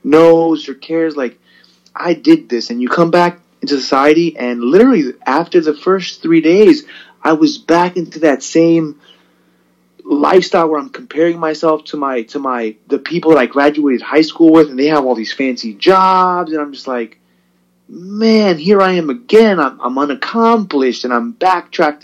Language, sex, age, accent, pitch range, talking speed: English, male, 30-49, American, 125-175 Hz, 175 wpm